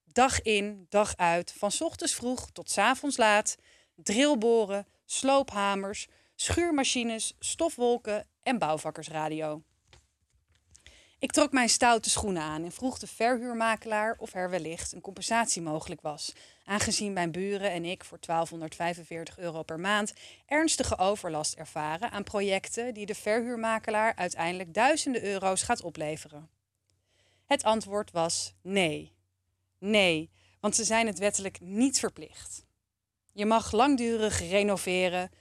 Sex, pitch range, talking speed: female, 160-230 Hz, 120 wpm